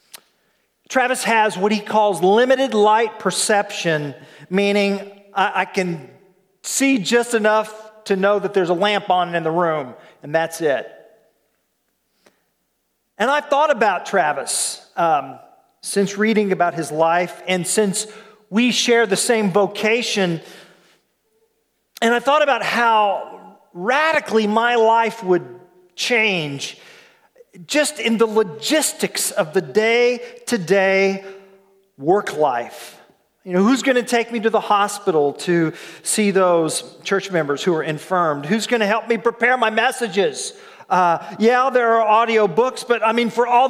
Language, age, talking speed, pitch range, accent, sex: English, 40-59, 140 wpm, 185-240 Hz, American, male